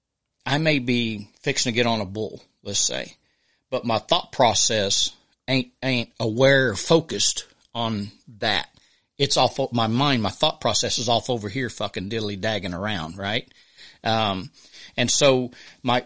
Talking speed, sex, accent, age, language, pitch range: 155 wpm, male, American, 40-59, English, 115-130 Hz